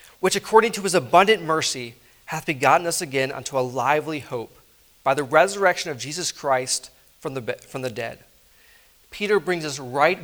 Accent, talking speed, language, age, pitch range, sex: American, 170 wpm, English, 40-59, 145-190 Hz, male